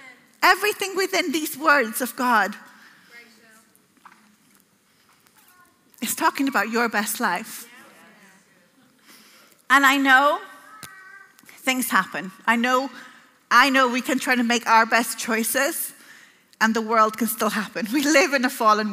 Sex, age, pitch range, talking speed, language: female, 40-59, 225-265 Hz, 125 wpm, English